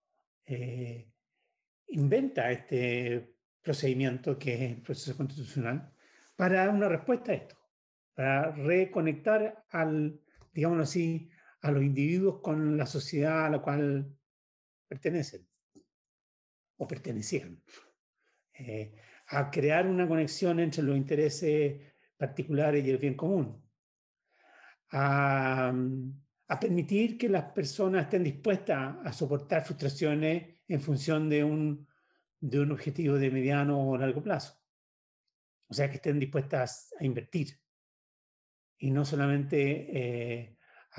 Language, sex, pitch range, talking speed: Spanish, male, 130-165 Hz, 115 wpm